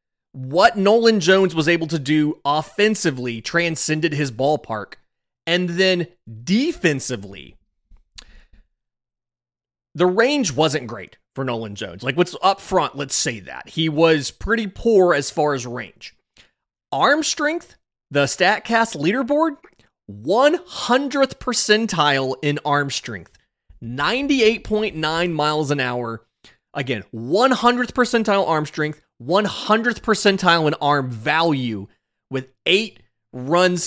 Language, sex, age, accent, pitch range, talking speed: English, male, 30-49, American, 130-185 Hz, 115 wpm